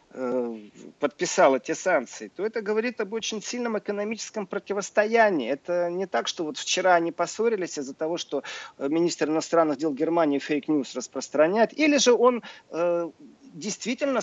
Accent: native